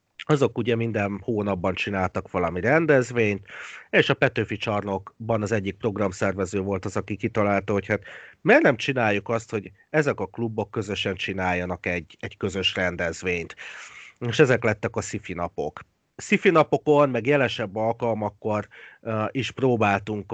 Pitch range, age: 95-120 Hz, 30-49